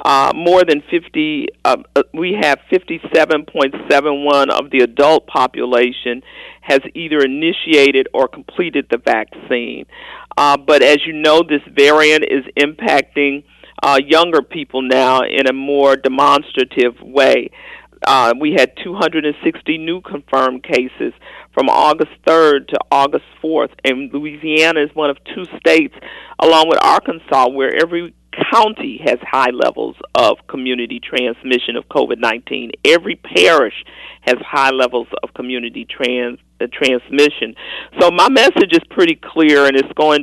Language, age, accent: English, 50-69, American